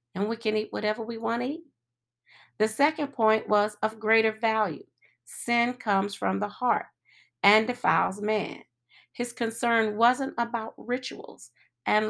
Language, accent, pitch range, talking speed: English, American, 190-240 Hz, 150 wpm